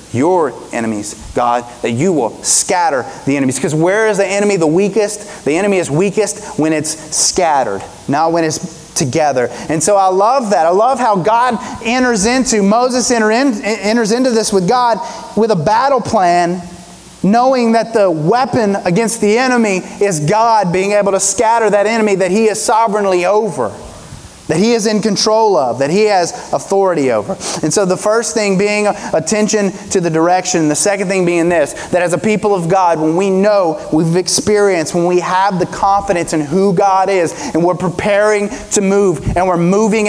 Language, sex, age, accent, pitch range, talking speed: English, male, 30-49, American, 165-210 Hz, 185 wpm